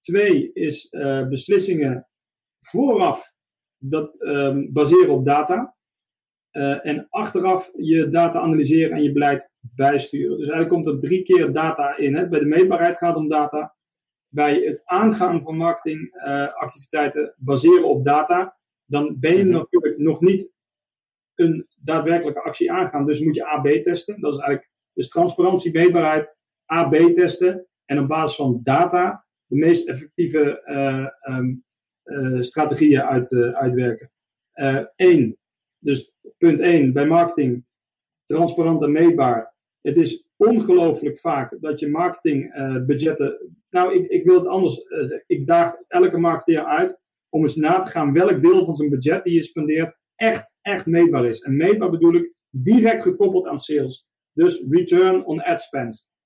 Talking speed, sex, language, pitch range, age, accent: 150 wpm, male, Dutch, 145-190 Hz, 40-59, Dutch